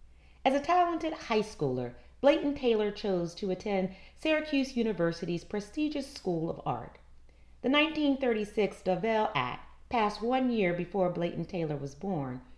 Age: 40-59